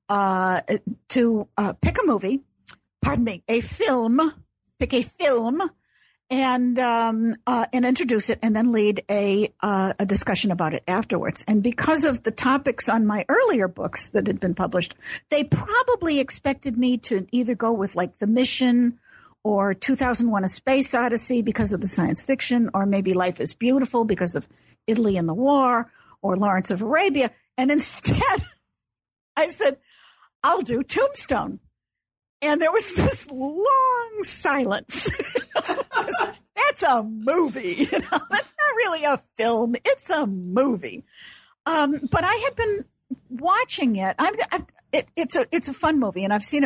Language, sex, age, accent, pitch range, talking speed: English, female, 60-79, American, 205-275 Hz, 155 wpm